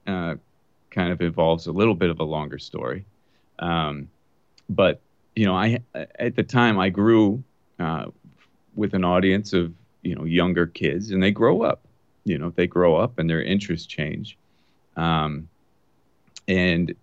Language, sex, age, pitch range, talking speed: English, male, 30-49, 85-100 Hz, 160 wpm